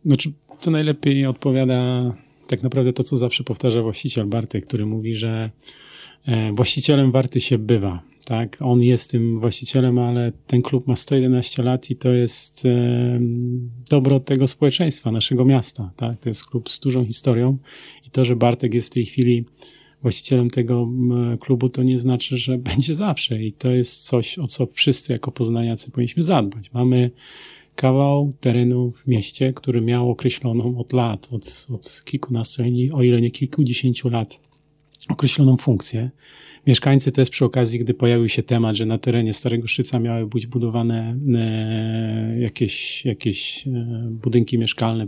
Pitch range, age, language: 115-130 Hz, 40-59, Polish